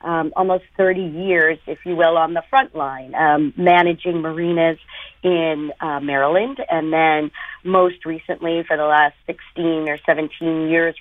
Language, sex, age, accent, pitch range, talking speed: English, female, 50-69, American, 155-180 Hz, 155 wpm